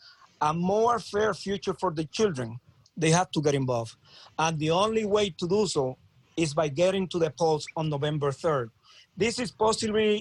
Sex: male